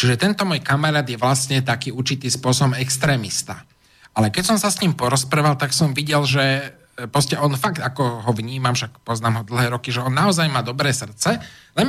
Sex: male